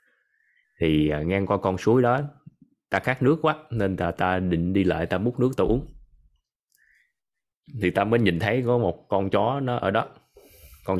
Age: 20-39